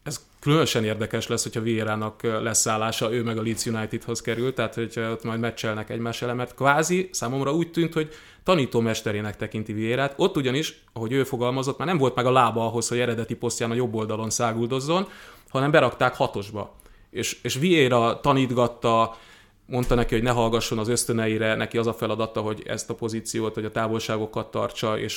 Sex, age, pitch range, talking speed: male, 20-39, 110-125 Hz, 175 wpm